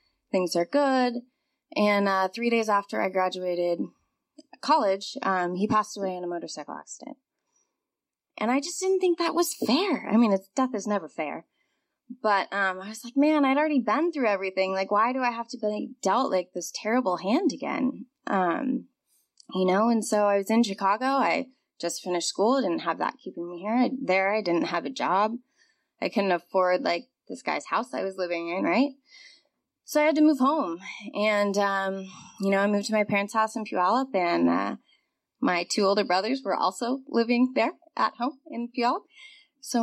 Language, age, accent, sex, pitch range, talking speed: English, 20-39, American, female, 190-270 Hz, 190 wpm